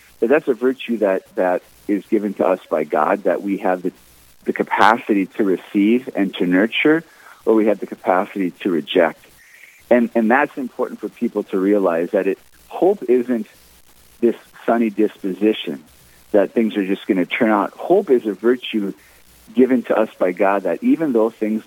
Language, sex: English, male